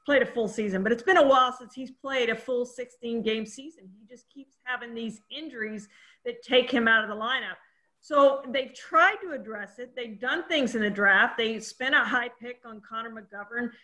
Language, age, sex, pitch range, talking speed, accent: English, 40-59, female, 215-265 Hz, 215 wpm, American